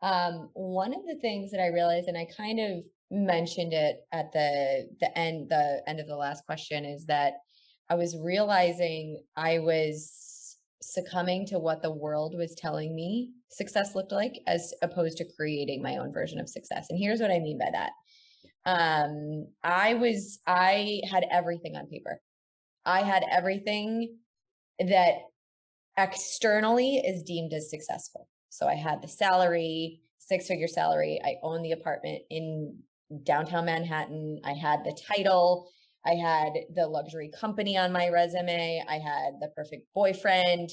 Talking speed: 155 wpm